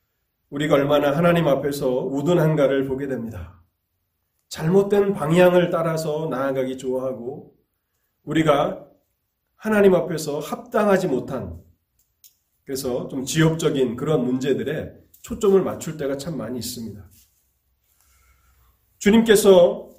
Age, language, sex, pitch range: 30-49, Korean, male, 125-180 Hz